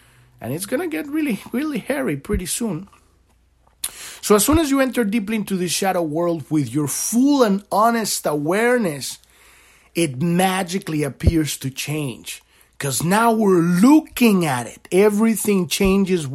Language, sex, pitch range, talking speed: English, male, 150-235 Hz, 145 wpm